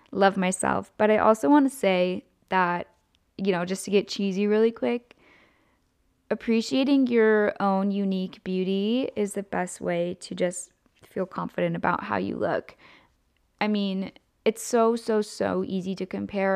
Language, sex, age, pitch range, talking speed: English, female, 10-29, 190-225 Hz, 155 wpm